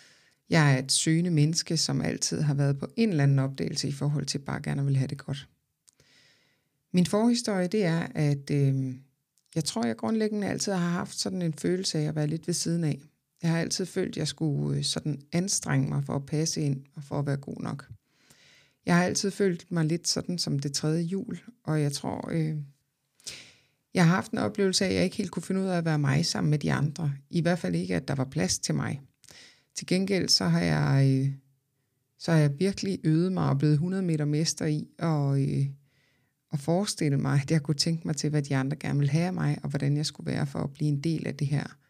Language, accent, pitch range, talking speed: Danish, native, 140-170 Hz, 230 wpm